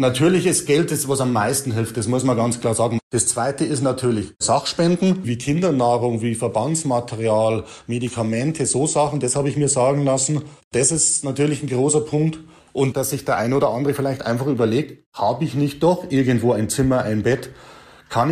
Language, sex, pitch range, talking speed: German, male, 120-150 Hz, 185 wpm